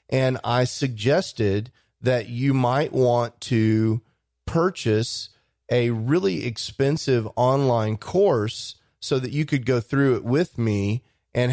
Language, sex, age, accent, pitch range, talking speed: English, male, 30-49, American, 115-140 Hz, 125 wpm